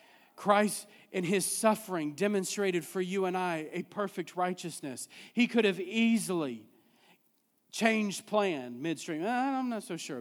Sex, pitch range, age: male, 200-250 Hz, 40-59